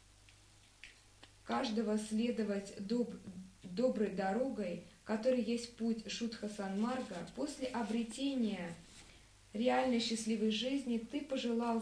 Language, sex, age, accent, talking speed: Russian, female, 20-39, native, 90 wpm